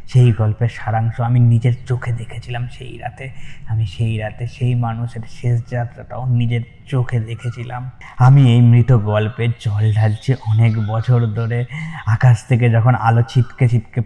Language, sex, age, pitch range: Bengali, male, 20-39, 110-125 Hz